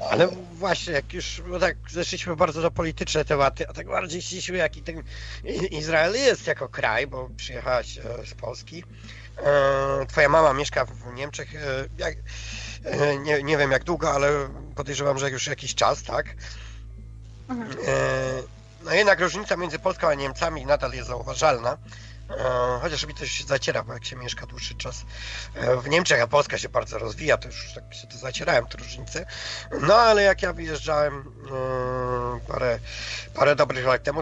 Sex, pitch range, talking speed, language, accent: male, 120-155 Hz, 160 wpm, Polish, native